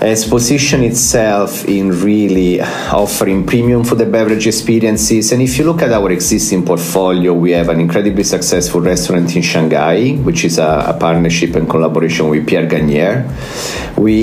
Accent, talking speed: Italian, 160 wpm